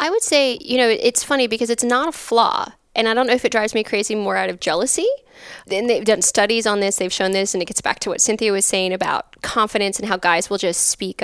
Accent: American